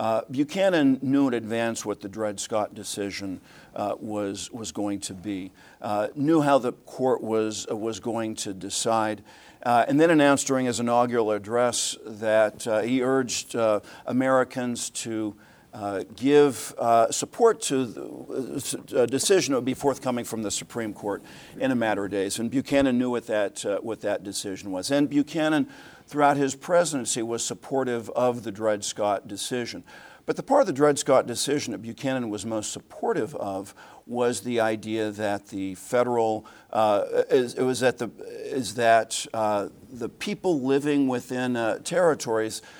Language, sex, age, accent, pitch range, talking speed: English, male, 50-69, American, 105-135 Hz, 165 wpm